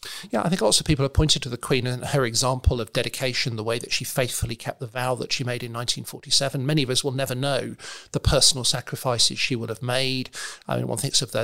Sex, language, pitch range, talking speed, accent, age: male, English, 120-140 Hz, 250 wpm, British, 40-59